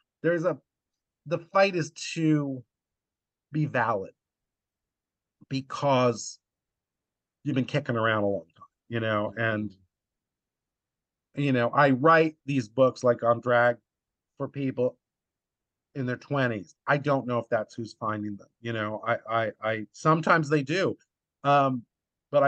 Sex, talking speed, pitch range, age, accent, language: male, 135 wpm, 115-150 Hz, 40-59, American, English